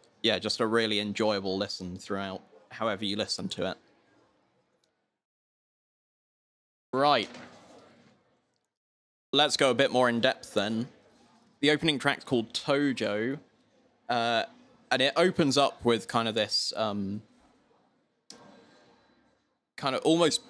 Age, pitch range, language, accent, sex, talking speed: 20-39, 105-125 Hz, English, British, male, 115 wpm